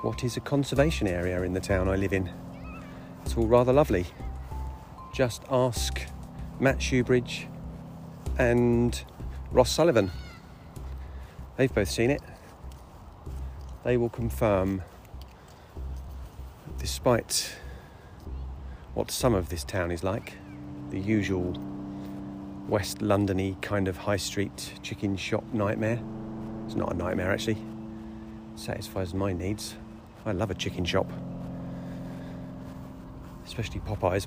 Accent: British